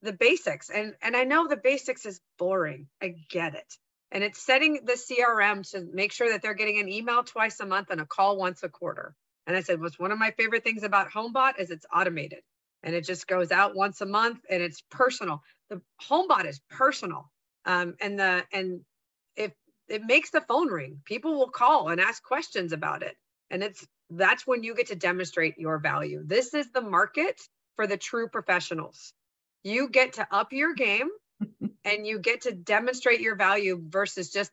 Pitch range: 180-230 Hz